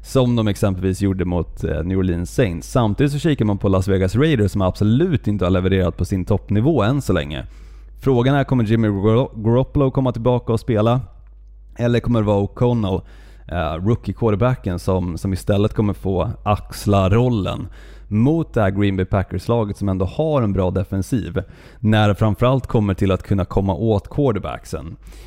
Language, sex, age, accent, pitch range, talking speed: Swedish, male, 30-49, native, 95-120 Hz, 170 wpm